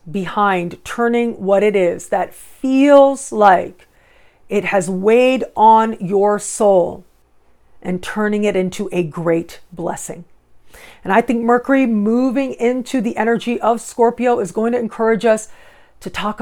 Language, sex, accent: English, female, American